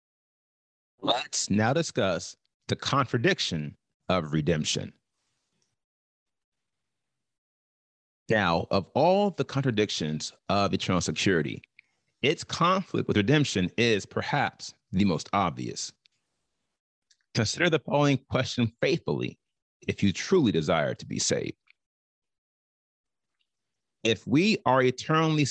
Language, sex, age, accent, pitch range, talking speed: English, male, 40-59, American, 95-140 Hz, 95 wpm